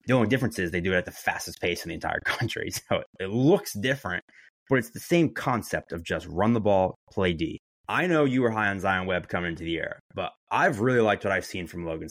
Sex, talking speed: male, 260 wpm